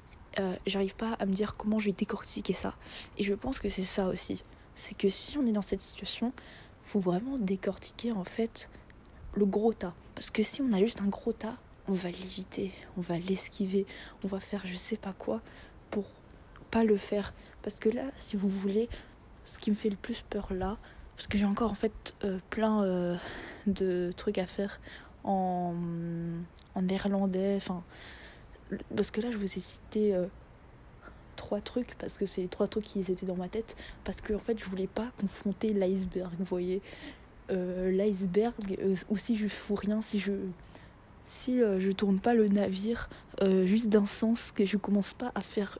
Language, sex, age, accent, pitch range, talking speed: French, female, 20-39, French, 190-215 Hz, 195 wpm